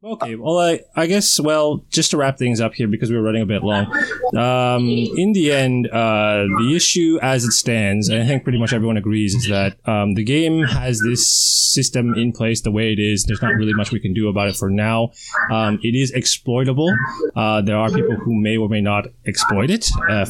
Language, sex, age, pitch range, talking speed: English, male, 20-39, 105-130 Hz, 230 wpm